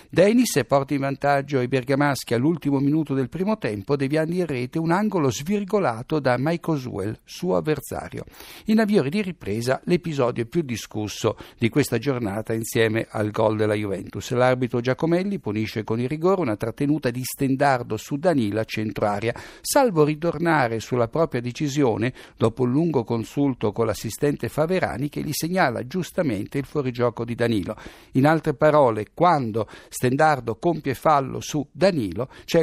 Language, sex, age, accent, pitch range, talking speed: Italian, male, 60-79, native, 115-150 Hz, 150 wpm